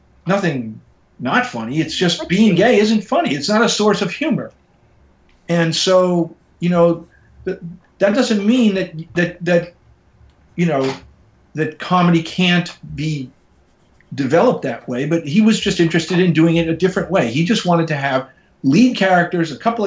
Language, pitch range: English, 140-180 Hz